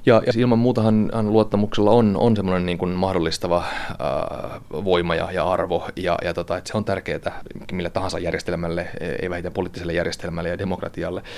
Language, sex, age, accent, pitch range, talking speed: Finnish, male, 30-49, native, 90-105 Hz, 165 wpm